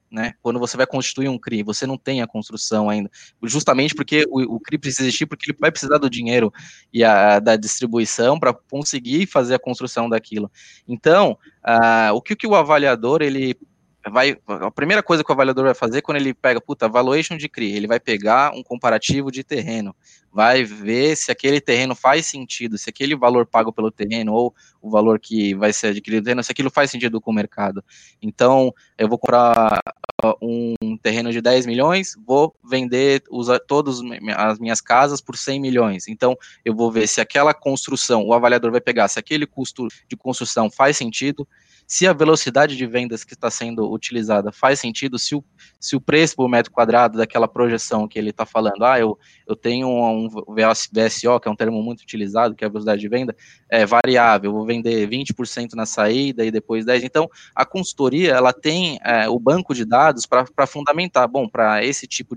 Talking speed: 190 wpm